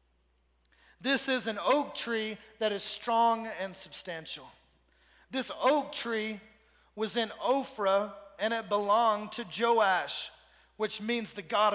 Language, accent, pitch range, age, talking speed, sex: English, American, 205-260 Hz, 30-49, 130 wpm, male